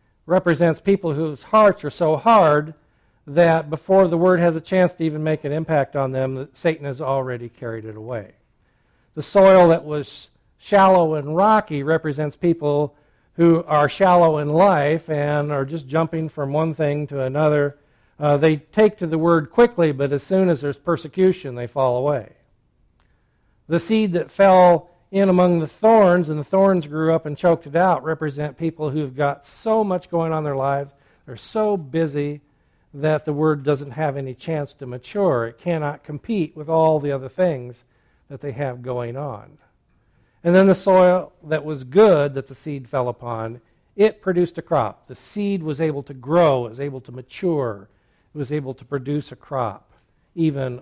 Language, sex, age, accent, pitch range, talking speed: English, male, 50-69, American, 140-170 Hz, 180 wpm